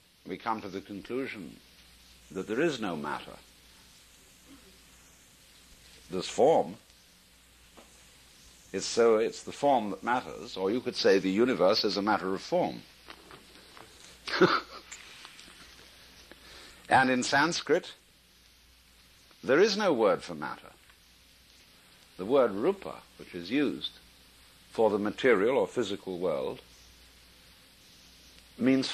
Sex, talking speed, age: male, 110 wpm, 60-79